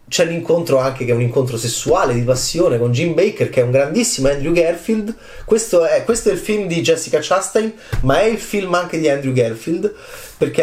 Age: 30-49